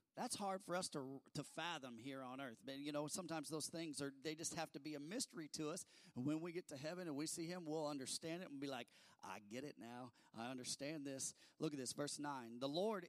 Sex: male